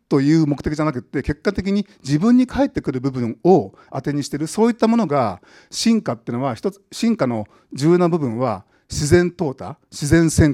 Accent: native